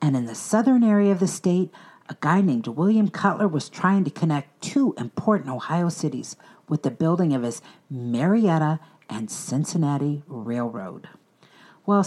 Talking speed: 155 wpm